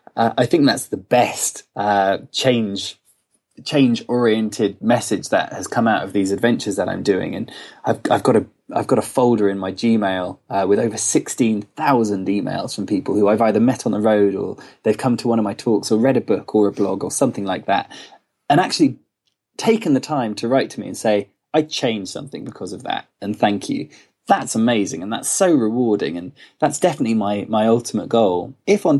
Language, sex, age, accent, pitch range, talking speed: English, male, 20-39, British, 100-125 Hz, 210 wpm